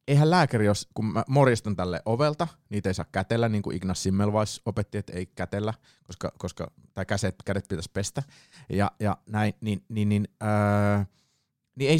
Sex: male